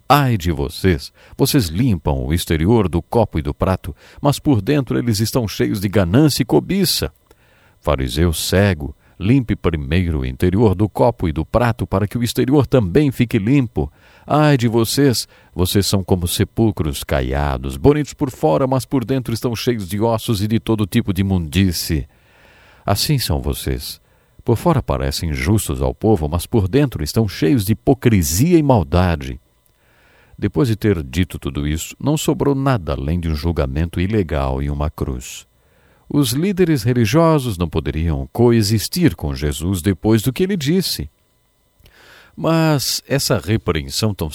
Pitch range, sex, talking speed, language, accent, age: 85-130 Hz, male, 155 wpm, English, Brazilian, 50-69